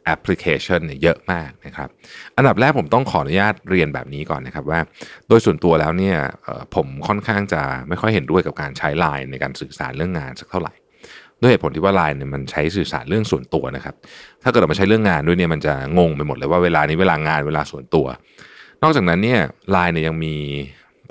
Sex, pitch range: male, 75-100 Hz